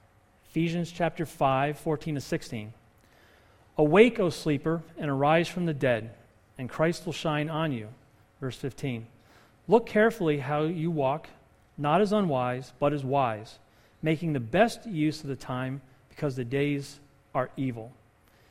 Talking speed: 145 wpm